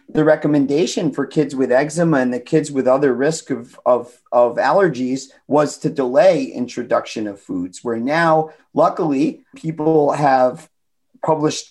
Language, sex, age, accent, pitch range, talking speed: English, male, 40-59, American, 125-160 Hz, 140 wpm